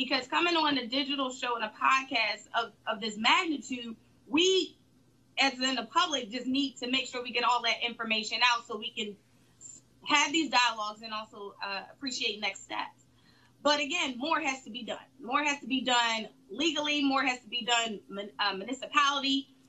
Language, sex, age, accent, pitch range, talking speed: English, female, 20-39, American, 235-280 Hz, 185 wpm